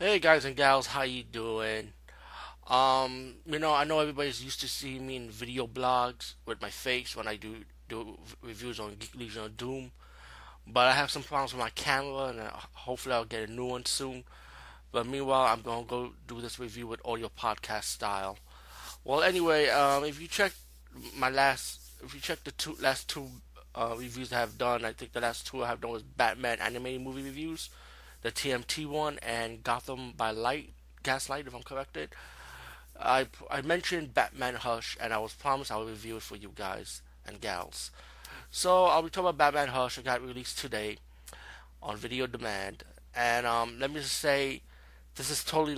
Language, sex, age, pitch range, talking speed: English, male, 20-39, 105-135 Hz, 190 wpm